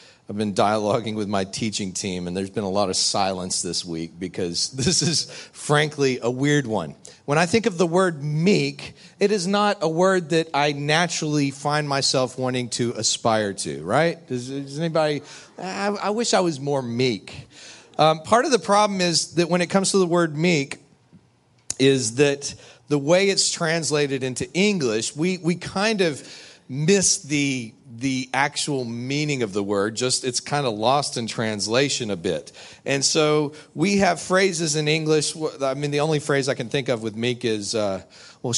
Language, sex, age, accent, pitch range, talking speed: English, male, 40-59, American, 130-185 Hz, 185 wpm